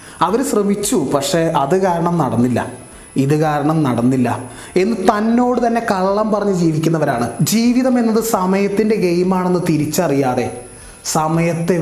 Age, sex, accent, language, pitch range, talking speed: 20-39, male, native, Malayalam, 140-175 Hz, 105 wpm